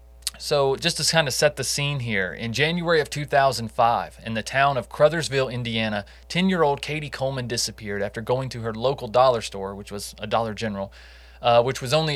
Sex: male